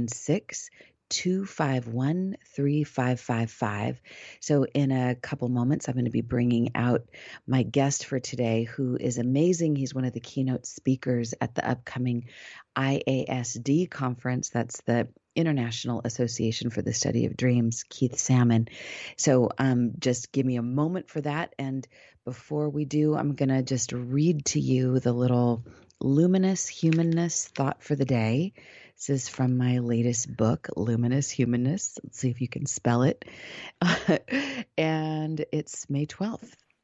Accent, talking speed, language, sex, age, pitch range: American, 155 wpm, English, female, 40-59, 120-150 Hz